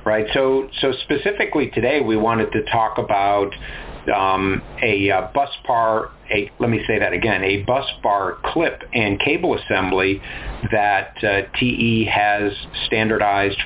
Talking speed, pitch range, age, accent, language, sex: 145 wpm, 105-120 Hz, 50-69, American, English, male